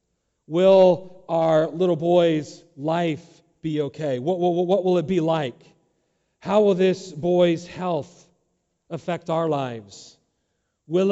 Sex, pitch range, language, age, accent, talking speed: male, 145-180 Hz, English, 40-59, American, 120 wpm